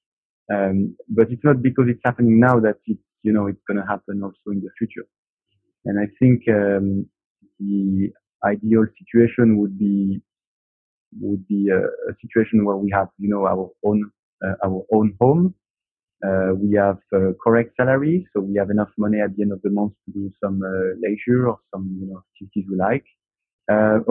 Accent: French